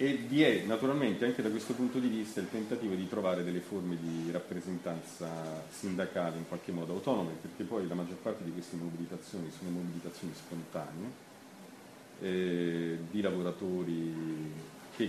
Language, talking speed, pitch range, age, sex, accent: Italian, 150 wpm, 90-110 Hz, 40-59, male, native